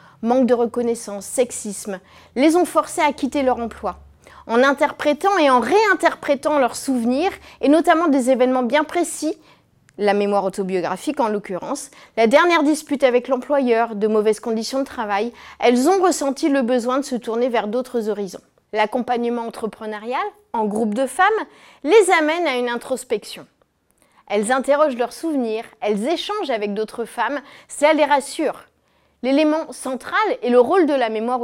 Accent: French